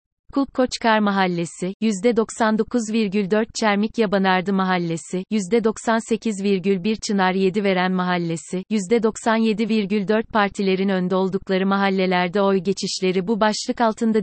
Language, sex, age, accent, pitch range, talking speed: Turkish, female, 30-49, native, 190-220 Hz, 90 wpm